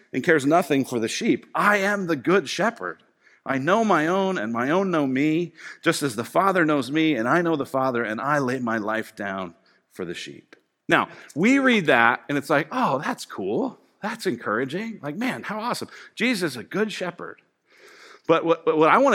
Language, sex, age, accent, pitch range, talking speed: English, male, 40-59, American, 125-185 Hz, 205 wpm